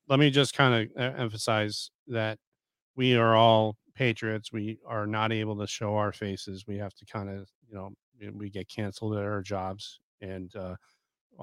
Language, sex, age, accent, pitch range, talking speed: English, male, 40-59, American, 100-115 Hz, 180 wpm